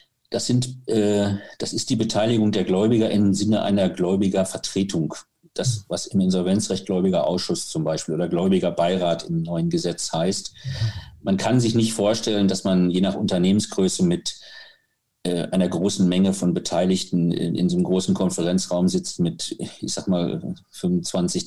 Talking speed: 160 wpm